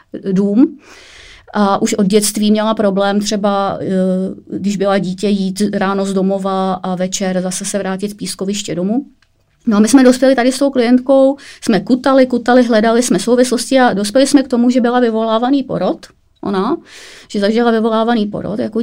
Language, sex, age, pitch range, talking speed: Czech, female, 30-49, 195-215 Hz, 165 wpm